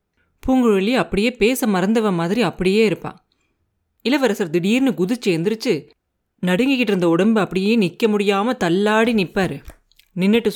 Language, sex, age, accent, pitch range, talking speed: Tamil, female, 30-49, native, 175-230 Hz, 120 wpm